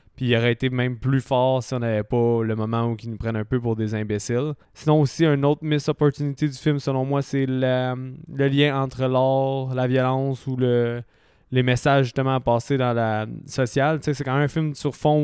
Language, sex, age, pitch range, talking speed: French, male, 20-39, 120-140 Hz, 230 wpm